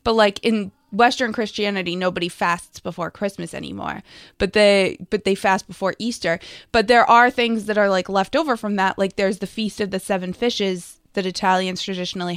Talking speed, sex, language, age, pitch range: 190 wpm, female, English, 20-39, 185-220 Hz